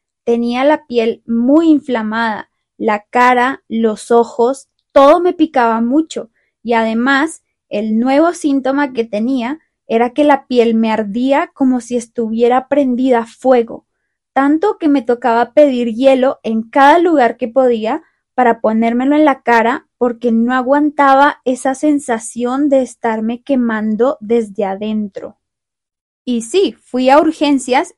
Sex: female